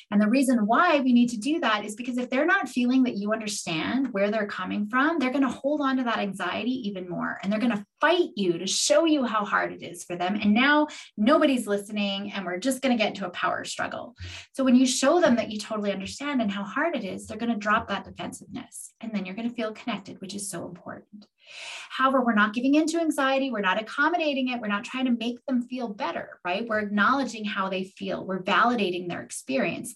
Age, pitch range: 20-39, 210-270 Hz